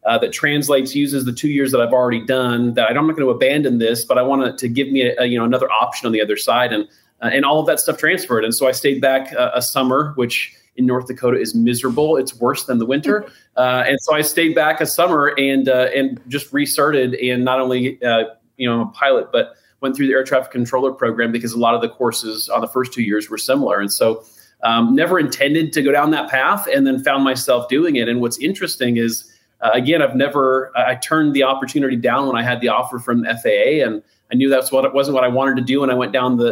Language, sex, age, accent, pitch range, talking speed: English, male, 30-49, American, 120-145 Hz, 260 wpm